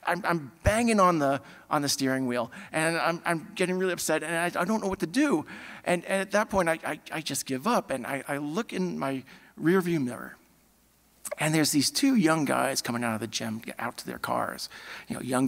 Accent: American